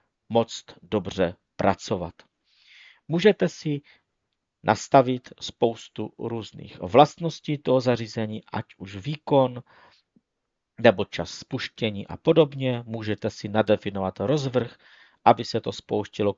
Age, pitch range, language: 50-69, 105-140 Hz, Czech